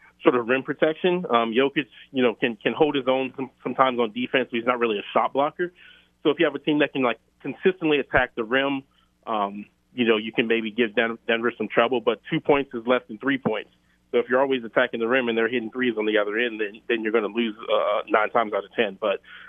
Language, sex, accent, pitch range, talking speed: English, male, American, 115-130 Hz, 250 wpm